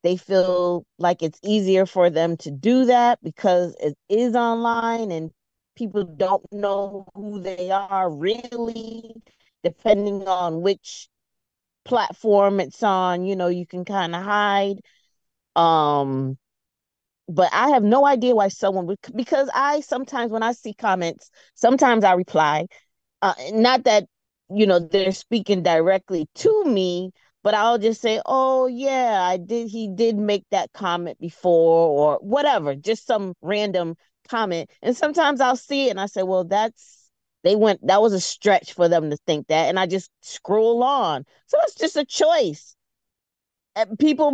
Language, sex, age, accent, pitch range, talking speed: English, female, 30-49, American, 180-235 Hz, 155 wpm